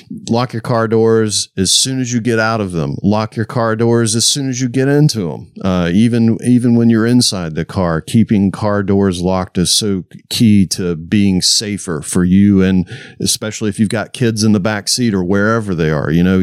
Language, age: English, 50-69